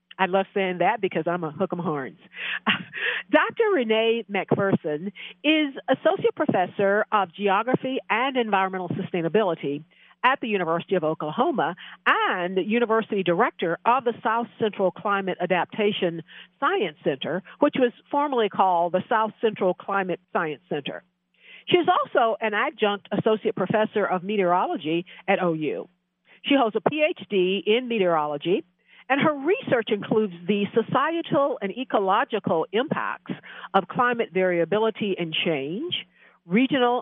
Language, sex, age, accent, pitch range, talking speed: English, female, 50-69, American, 180-230 Hz, 125 wpm